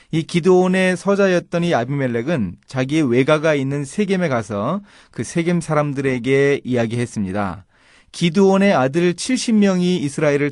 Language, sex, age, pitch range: Korean, male, 30-49, 115-170 Hz